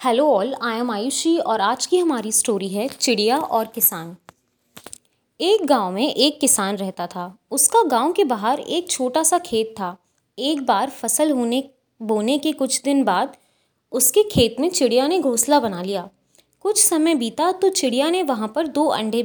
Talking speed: 180 wpm